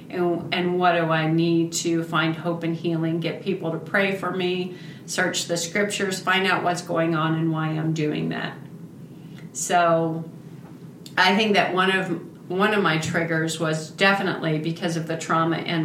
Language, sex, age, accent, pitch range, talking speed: English, female, 40-59, American, 165-195 Hz, 175 wpm